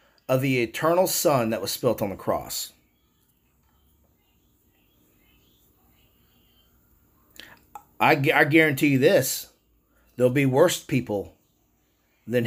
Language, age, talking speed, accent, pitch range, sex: English, 30-49, 100 wpm, American, 100-130 Hz, male